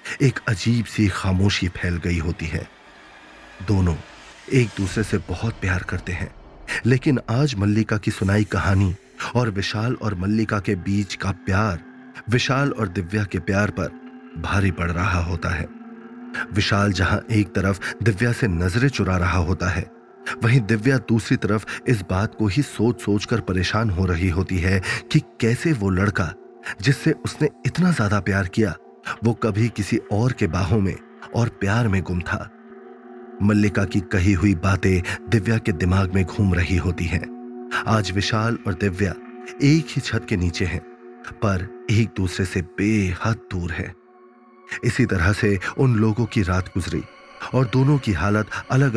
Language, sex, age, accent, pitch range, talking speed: Hindi, male, 30-49, native, 95-115 Hz, 160 wpm